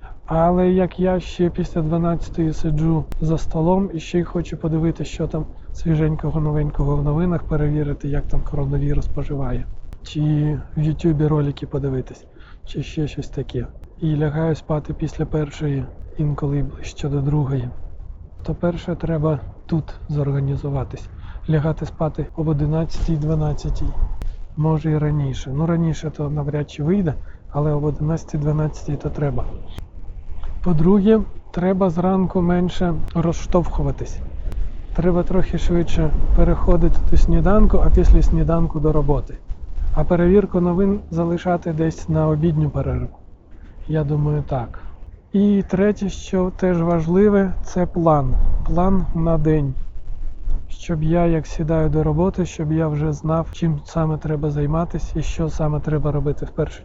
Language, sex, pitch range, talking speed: Ukrainian, male, 140-170 Hz, 130 wpm